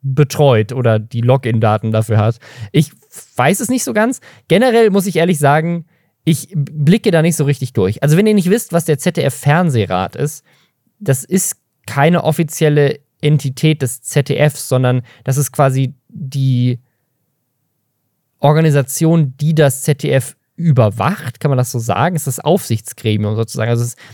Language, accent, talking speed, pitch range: German, German, 160 wpm, 120-160 Hz